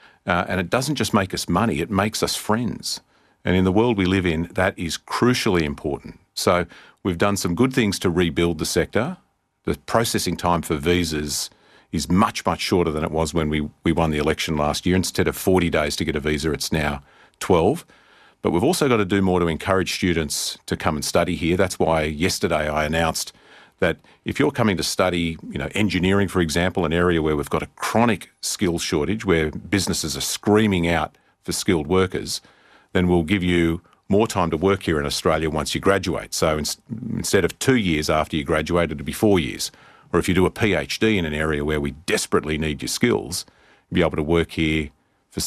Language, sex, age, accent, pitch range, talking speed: English, male, 40-59, Australian, 80-95 Hz, 210 wpm